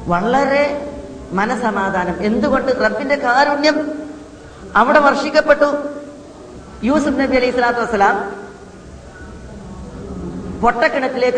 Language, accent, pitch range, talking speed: Malayalam, native, 215-275 Hz, 70 wpm